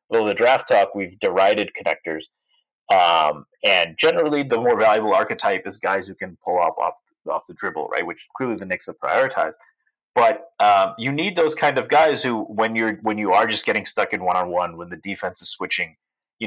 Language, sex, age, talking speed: English, male, 30-49, 200 wpm